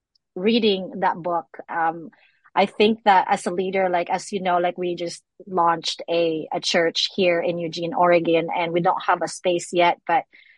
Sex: female